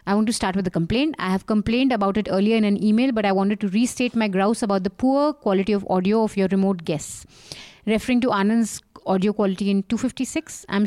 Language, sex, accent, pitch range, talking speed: English, female, Indian, 190-235 Hz, 225 wpm